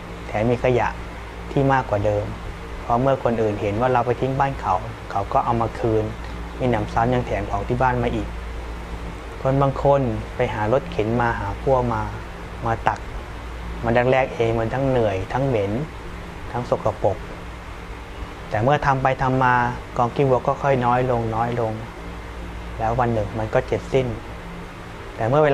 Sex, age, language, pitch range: male, 20-39, Thai, 100-125 Hz